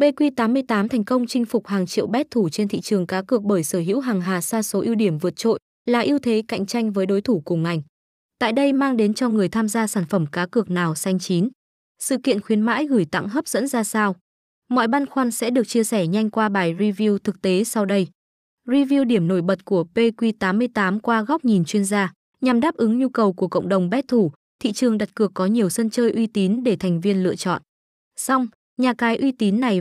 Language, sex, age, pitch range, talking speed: Vietnamese, female, 20-39, 190-245 Hz, 235 wpm